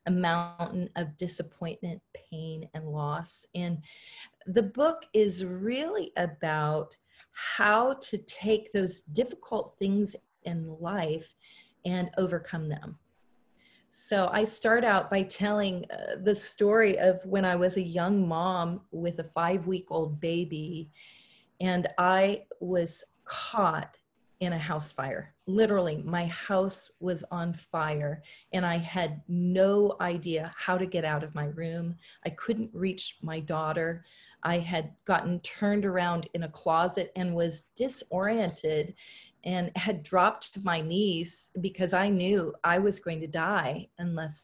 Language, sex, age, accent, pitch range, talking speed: English, female, 40-59, American, 165-195 Hz, 135 wpm